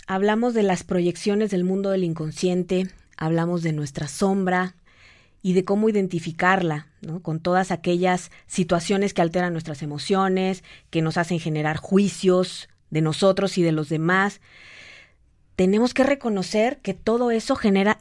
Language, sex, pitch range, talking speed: Spanish, female, 170-210 Hz, 145 wpm